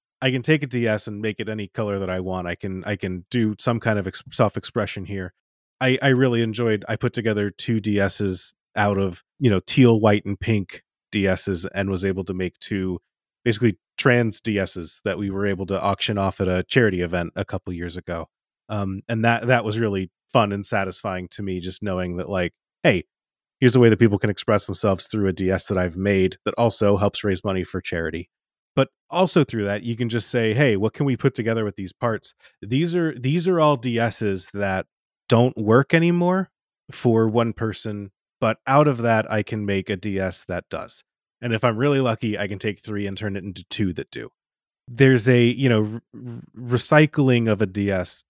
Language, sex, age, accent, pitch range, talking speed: English, male, 30-49, American, 95-115 Hz, 210 wpm